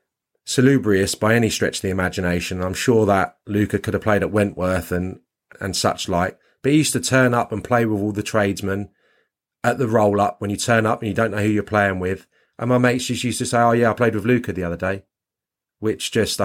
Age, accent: 30-49, British